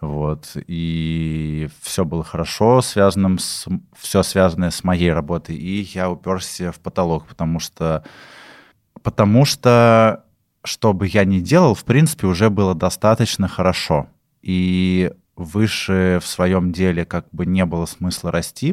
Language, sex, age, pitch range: Russian, male, 20-39, 85-100 Hz